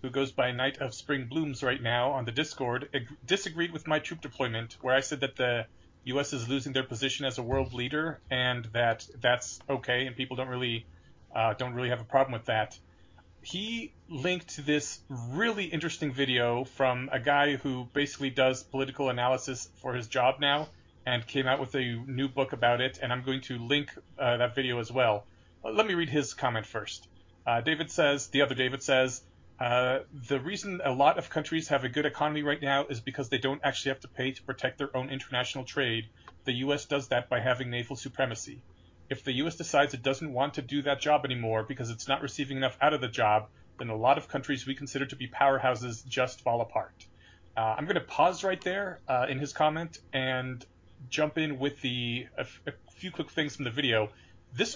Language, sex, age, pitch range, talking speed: English, male, 30-49, 120-145 Hz, 210 wpm